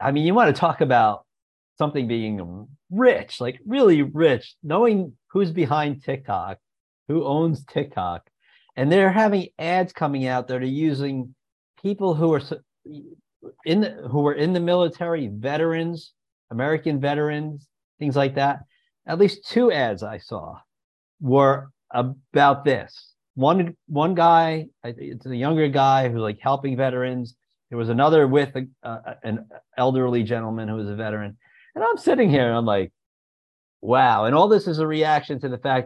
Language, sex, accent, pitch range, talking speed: English, male, American, 120-175 Hz, 160 wpm